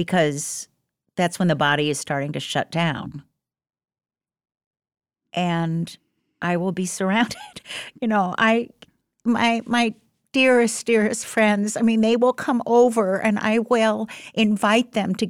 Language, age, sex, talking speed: English, 50-69, female, 135 wpm